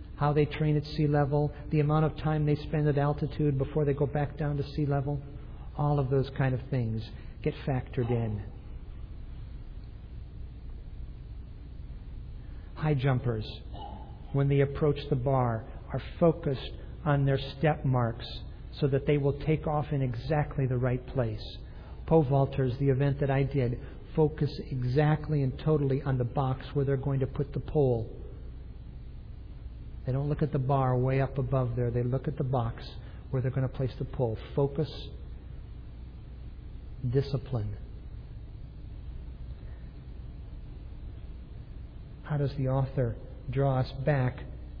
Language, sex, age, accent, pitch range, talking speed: English, male, 50-69, American, 125-145 Hz, 145 wpm